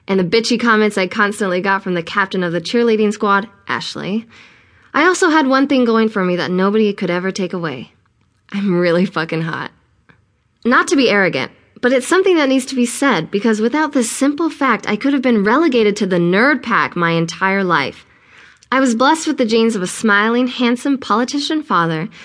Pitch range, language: 180-250 Hz, English